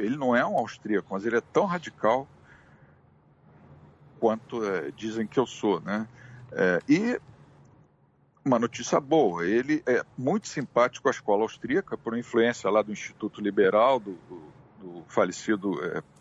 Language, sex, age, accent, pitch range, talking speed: Portuguese, male, 60-79, Brazilian, 110-135 Hz, 150 wpm